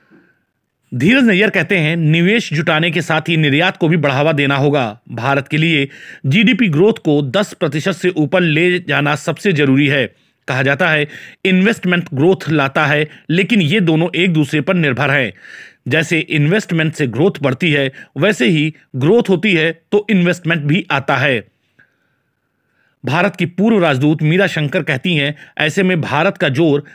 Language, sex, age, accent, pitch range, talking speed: Hindi, male, 40-59, native, 145-185 Hz, 165 wpm